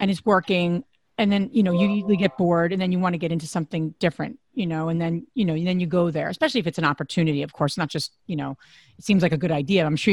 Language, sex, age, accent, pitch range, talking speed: English, female, 40-59, American, 175-245 Hz, 290 wpm